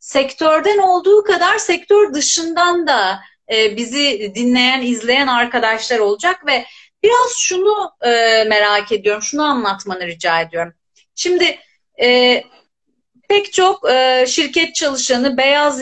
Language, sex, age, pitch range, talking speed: Turkish, female, 40-59, 250-370 Hz, 100 wpm